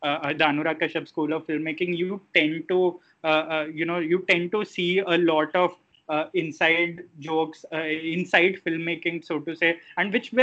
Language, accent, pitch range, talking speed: English, Indian, 155-185 Hz, 180 wpm